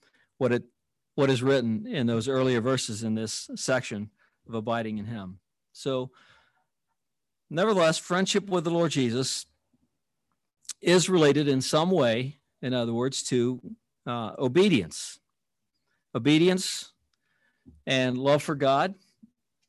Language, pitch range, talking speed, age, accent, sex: English, 125-170 Hz, 120 wpm, 50-69, American, male